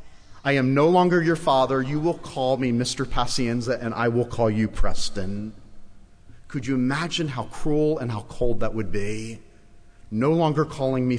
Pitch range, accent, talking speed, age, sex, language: 105-150 Hz, American, 175 wpm, 40-59, male, English